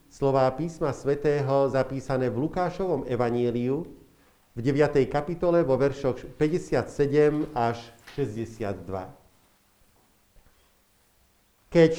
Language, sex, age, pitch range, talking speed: Slovak, male, 50-69, 115-160 Hz, 80 wpm